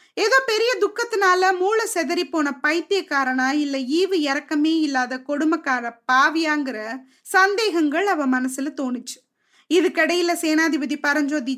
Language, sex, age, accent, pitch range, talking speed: Tamil, female, 20-39, native, 280-370 Hz, 105 wpm